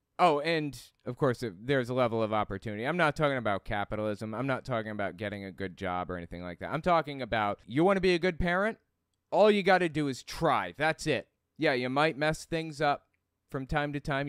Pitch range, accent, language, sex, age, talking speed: 105-150 Hz, American, English, male, 30-49, 235 wpm